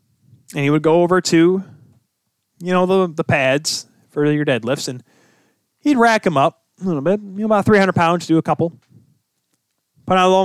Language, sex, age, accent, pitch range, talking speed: English, male, 20-39, American, 145-210 Hz, 195 wpm